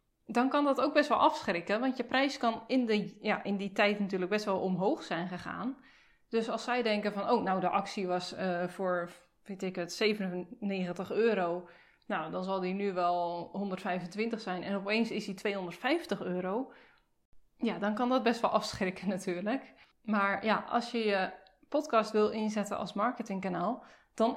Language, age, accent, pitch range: Dutch, 20-39, Dutch, 190-245 Hz